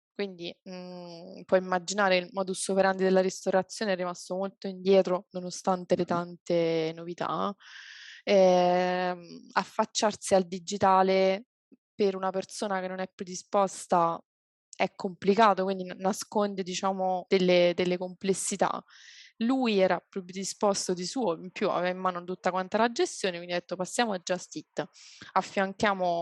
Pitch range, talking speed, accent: 180-200 Hz, 135 wpm, native